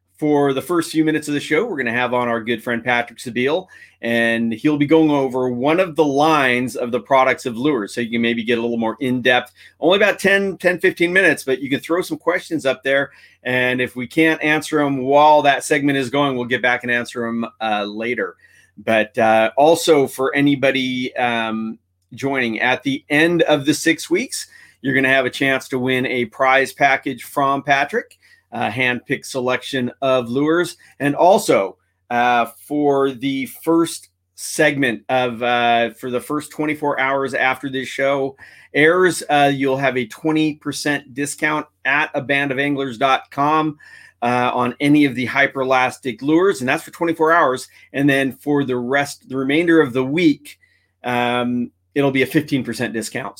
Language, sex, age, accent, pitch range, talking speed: English, male, 40-59, American, 125-150 Hz, 180 wpm